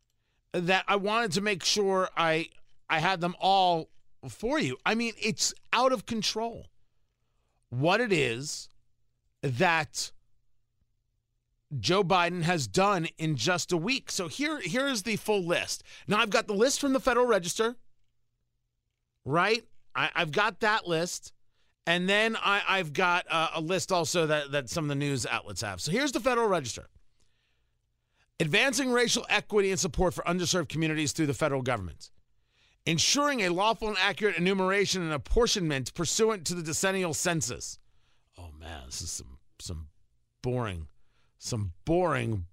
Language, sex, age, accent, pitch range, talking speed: English, male, 40-59, American, 120-195 Hz, 155 wpm